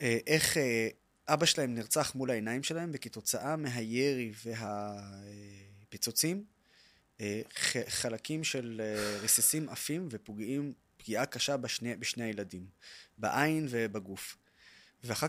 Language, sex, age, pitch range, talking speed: Hebrew, male, 20-39, 115-150 Hz, 100 wpm